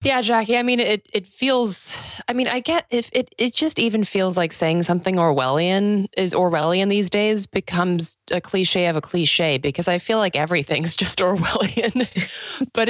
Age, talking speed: 20-39, 180 wpm